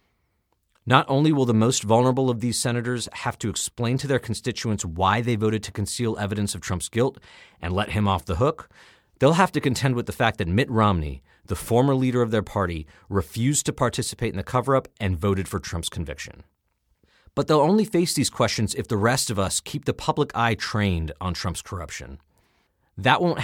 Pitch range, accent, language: 95-125 Hz, American, English